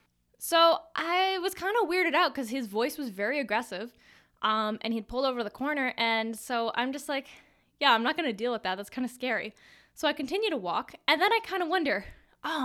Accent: American